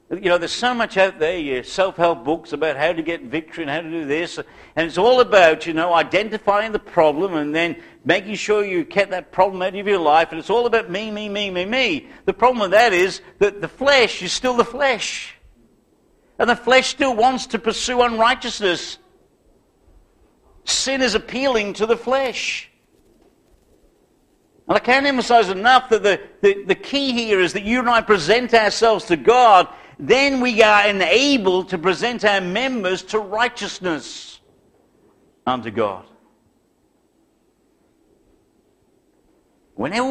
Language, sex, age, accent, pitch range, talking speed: English, male, 50-69, British, 185-255 Hz, 165 wpm